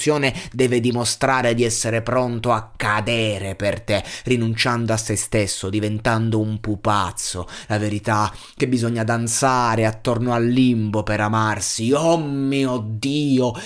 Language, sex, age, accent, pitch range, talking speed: Italian, male, 20-39, native, 95-115 Hz, 125 wpm